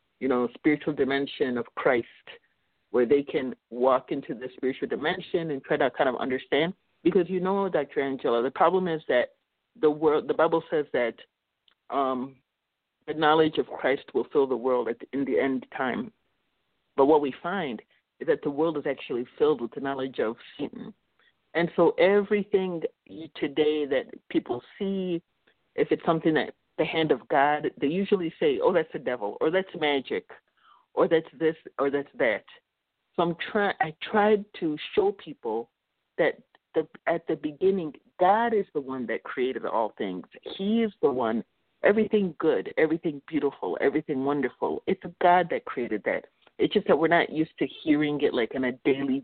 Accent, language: American, English